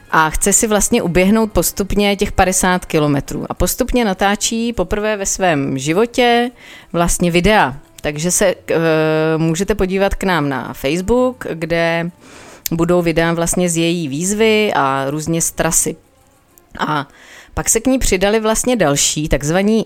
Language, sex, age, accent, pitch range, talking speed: Czech, female, 30-49, native, 150-200 Hz, 140 wpm